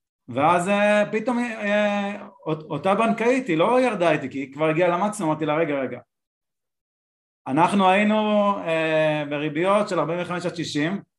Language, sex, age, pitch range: Hebrew, male, 30-49, 140-190 Hz